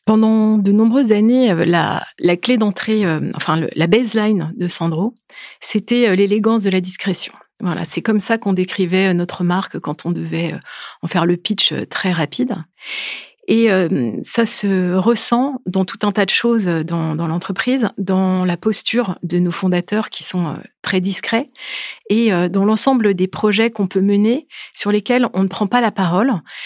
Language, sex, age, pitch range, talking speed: French, female, 30-49, 180-220 Hz, 180 wpm